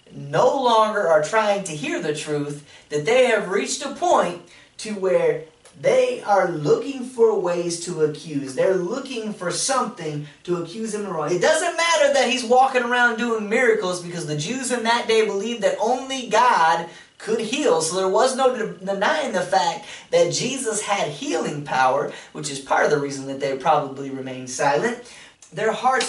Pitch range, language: 170-255 Hz, English